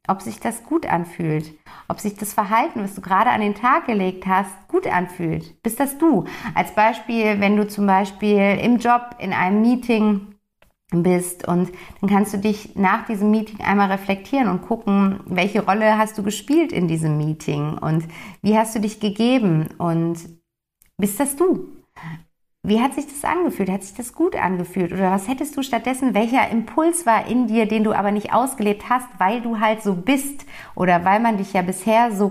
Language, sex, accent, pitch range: German, female, German, 190-235 Hz